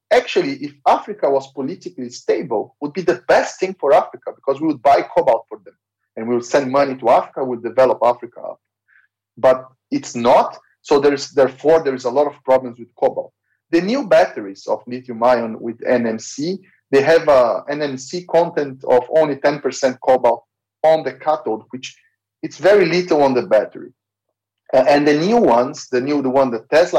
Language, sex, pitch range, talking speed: English, male, 125-180 Hz, 185 wpm